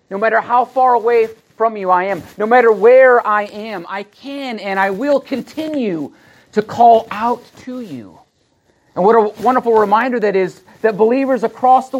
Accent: American